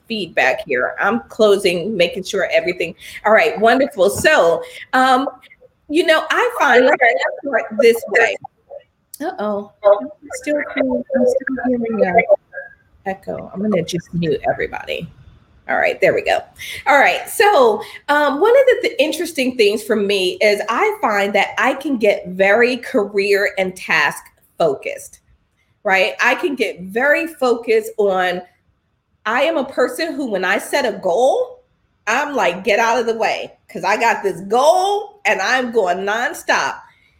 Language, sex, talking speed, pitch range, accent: English, female, 145 wpm, 205-325 Hz, American